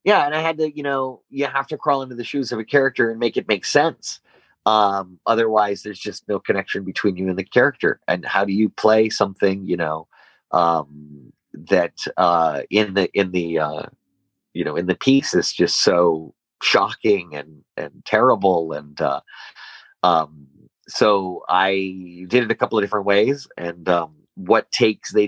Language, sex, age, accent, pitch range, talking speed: English, male, 30-49, American, 90-115 Hz, 185 wpm